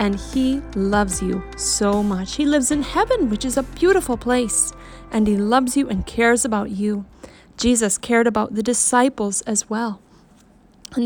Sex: female